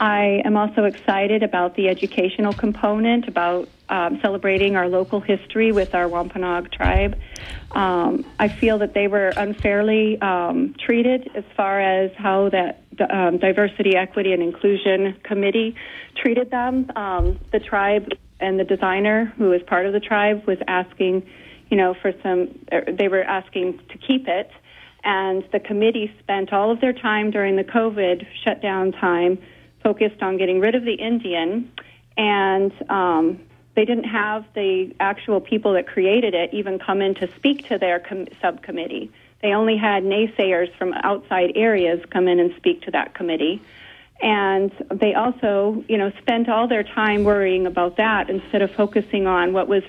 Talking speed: 165 wpm